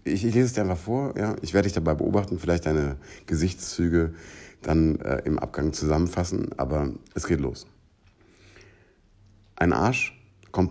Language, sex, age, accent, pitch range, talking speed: German, male, 60-79, German, 75-95 Hz, 150 wpm